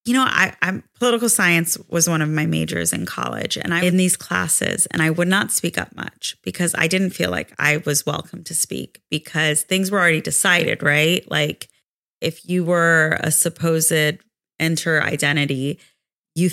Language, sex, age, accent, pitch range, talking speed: English, female, 30-49, American, 165-210 Hz, 180 wpm